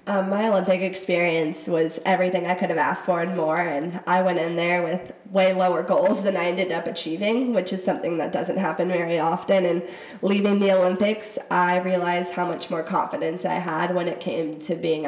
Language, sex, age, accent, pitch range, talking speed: English, female, 20-39, American, 170-190 Hz, 205 wpm